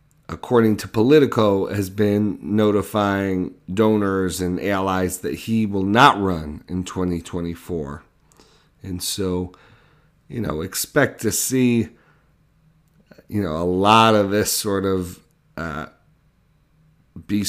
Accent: American